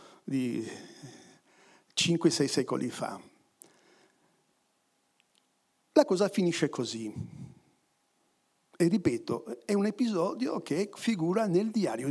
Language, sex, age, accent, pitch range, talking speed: Italian, male, 60-79, native, 135-195 Hz, 85 wpm